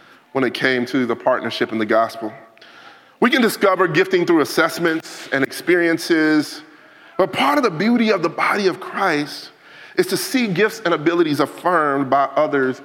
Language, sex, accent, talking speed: English, male, American, 170 wpm